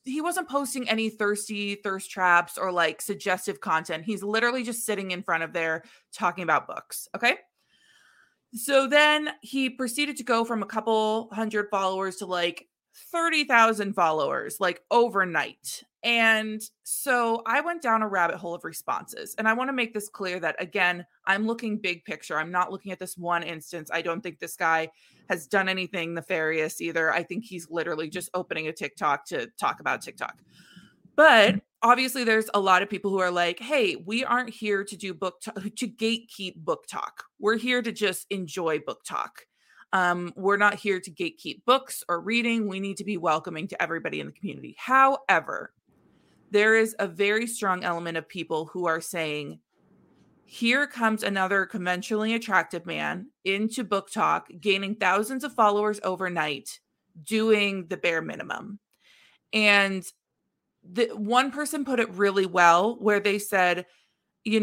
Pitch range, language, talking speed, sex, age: 180-230 Hz, English, 170 wpm, female, 20-39